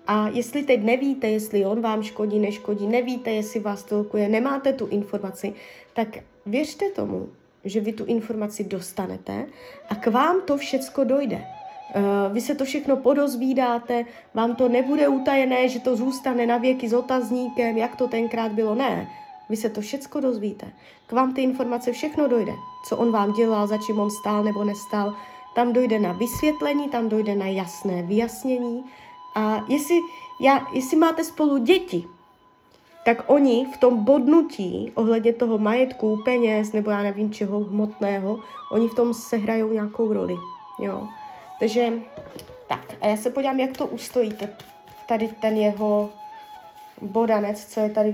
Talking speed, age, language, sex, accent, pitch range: 155 wpm, 20-39, Czech, female, native, 210-265 Hz